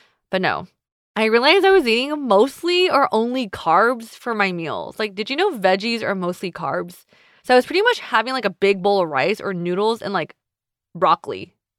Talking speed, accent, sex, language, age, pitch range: 200 wpm, American, female, English, 20-39, 190-255 Hz